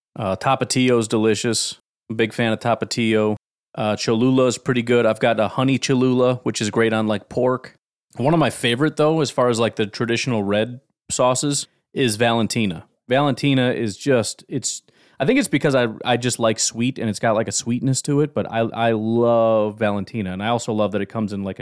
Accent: American